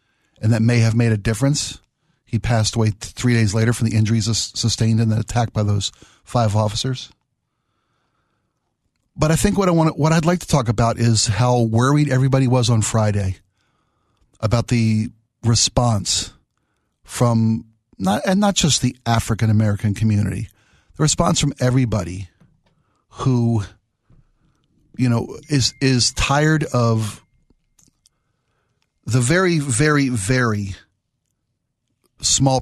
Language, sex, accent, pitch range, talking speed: English, male, American, 110-125 Hz, 130 wpm